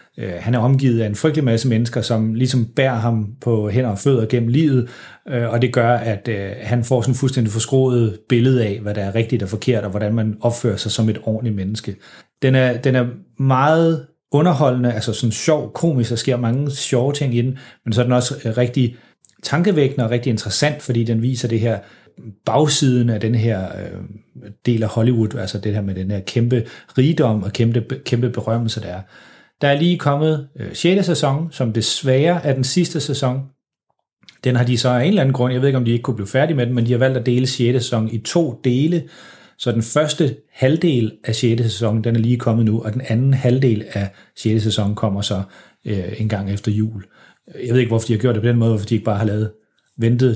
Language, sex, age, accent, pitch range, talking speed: Danish, male, 30-49, native, 110-130 Hz, 220 wpm